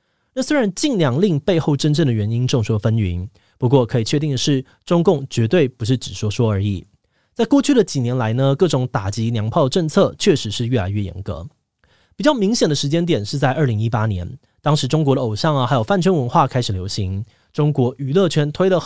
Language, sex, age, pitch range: Chinese, male, 20-39, 115-160 Hz